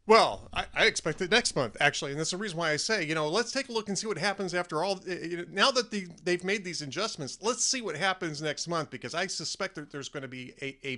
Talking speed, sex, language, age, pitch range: 285 wpm, male, English, 40-59, 140-195 Hz